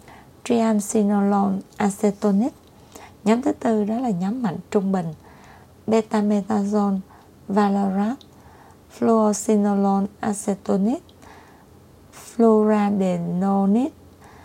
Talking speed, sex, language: 65 wpm, female, Vietnamese